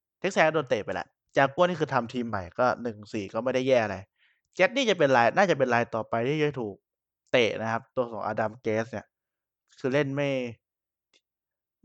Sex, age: male, 20-39